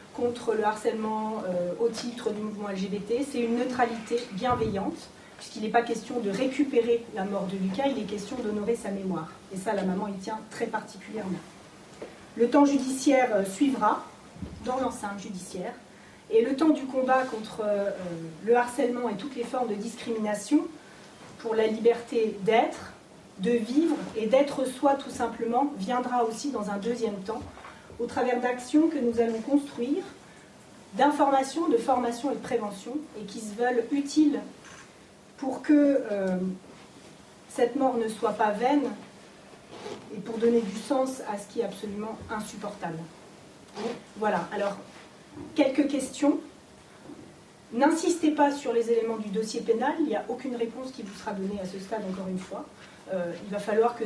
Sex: female